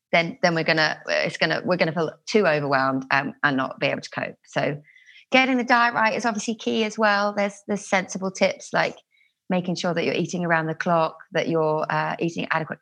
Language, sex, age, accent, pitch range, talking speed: English, female, 30-49, British, 170-220 Hz, 215 wpm